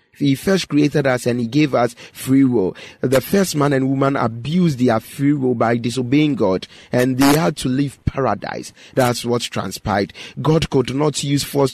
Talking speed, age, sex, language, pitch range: 185 wpm, 30-49, male, English, 120-145 Hz